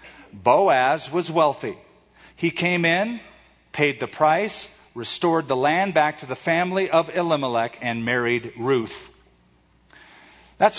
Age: 50-69